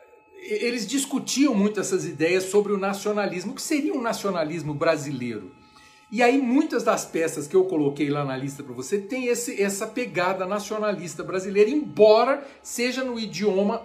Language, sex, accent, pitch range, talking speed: Portuguese, male, Brazilian, 155-225 Hz, 155 wpm